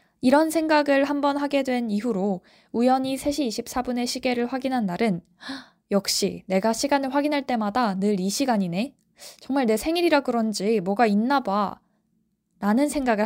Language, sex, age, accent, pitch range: Korean, female, 20-39, native, 195-260 Hz